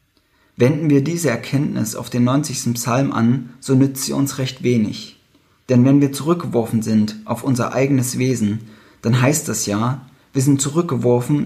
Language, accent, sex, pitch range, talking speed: German, German, male, 115-140 Hz, 160 wpm